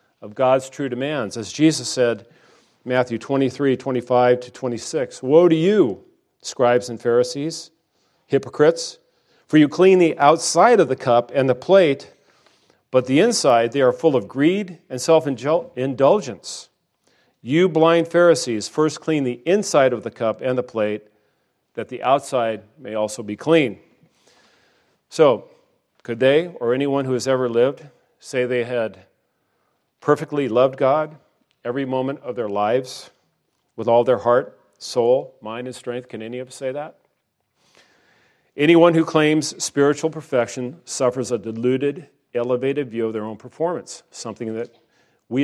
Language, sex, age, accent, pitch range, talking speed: English, male, 40-59, American, 120-155 Hz, 145 wpm